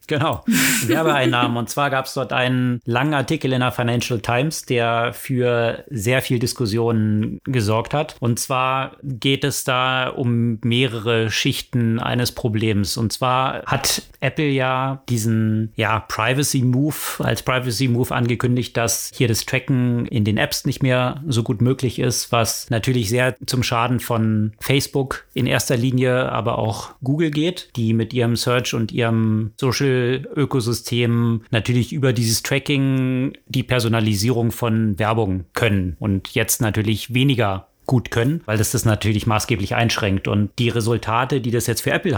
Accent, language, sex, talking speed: German, German, male, 150 wpm